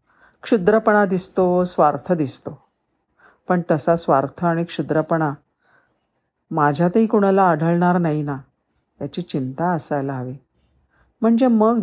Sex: female